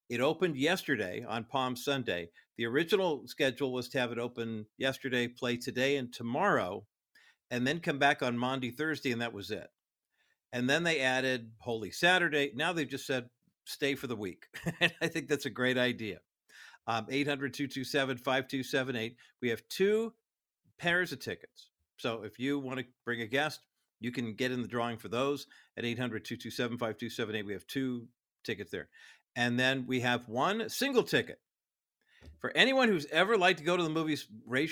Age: 50-69